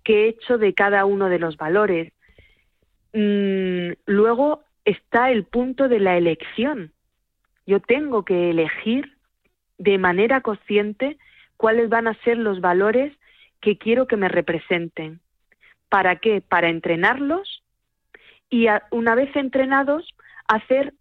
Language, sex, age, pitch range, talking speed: Spanish, female, 40-59, 180-230 Hz, 130 wpm